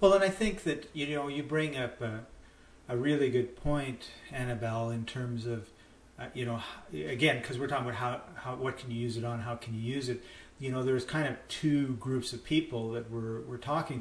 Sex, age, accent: male, 40-59, American